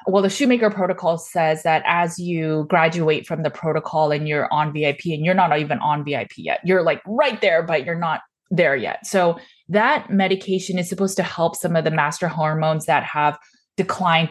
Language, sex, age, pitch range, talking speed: English, female, 20-39, 155-185 Hz, 195 wpm